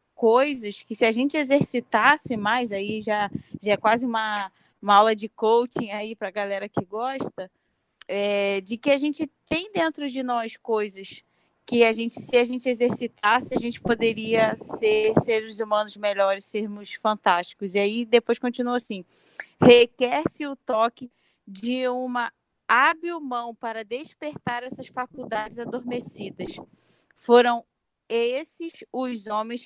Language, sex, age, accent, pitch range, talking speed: Portuguese, female, 20-39, Brazilian, 215-250 Hz, 140 wpm